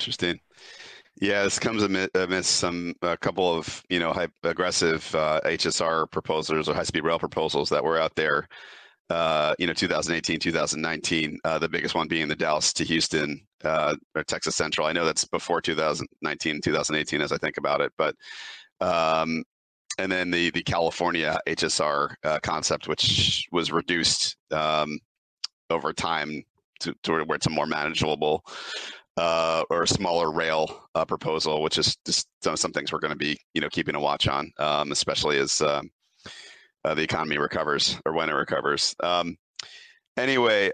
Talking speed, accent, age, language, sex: 170 wpm, American, 40-59, English, male